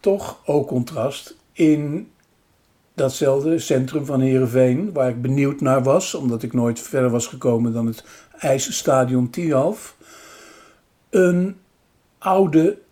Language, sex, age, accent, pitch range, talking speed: Dutch, male, 60-79, Dutch, 120-150 Hz, 115 wpm